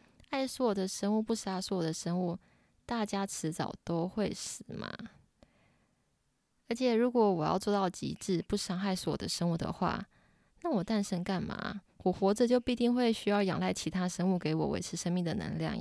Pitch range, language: 180-210 Hz, Chinese